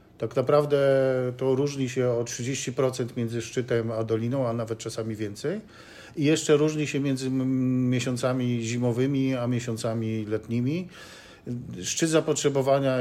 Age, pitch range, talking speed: 50-69, 120-150 Hz, 125 wpm